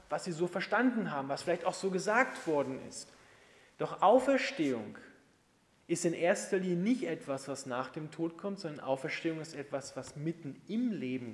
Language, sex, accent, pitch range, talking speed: German, male, German, 155-215 Hz, 175 wpm